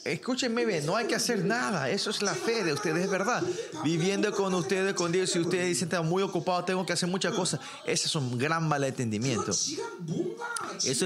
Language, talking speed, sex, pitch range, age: Spanish, 195 wpm, male, 150-215 Hz, 30-49